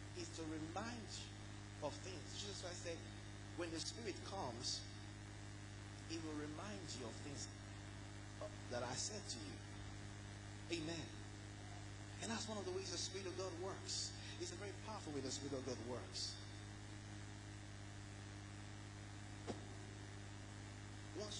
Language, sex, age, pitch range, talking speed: English, male, 30-49, 100-105 Hz, 135 wpm